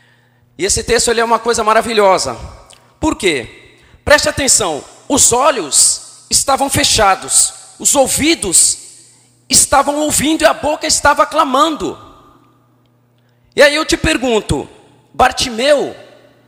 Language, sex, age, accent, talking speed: Portuguese, male, 40-59, Brazilian, 115 wpm